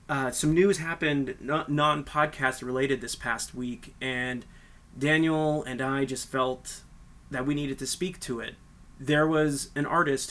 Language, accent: English, American